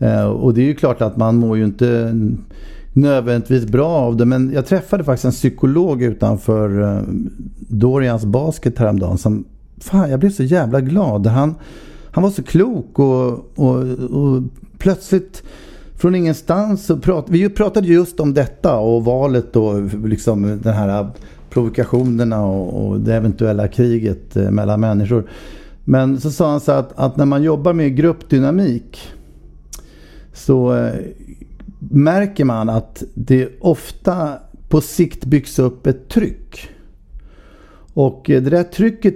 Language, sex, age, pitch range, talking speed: Swedish, male, 50-69, 115-155 Hz, 140 wpm